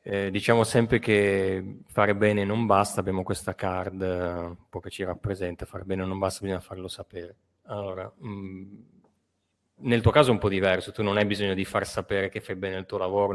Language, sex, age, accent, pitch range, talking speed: Italian, male, 20-39, native, 95-110 Hz, 200 wpm